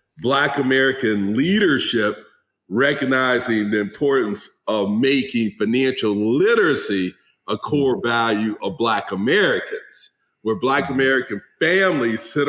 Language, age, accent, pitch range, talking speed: English, 50-69, American, 130-185 Hz, 100 wpm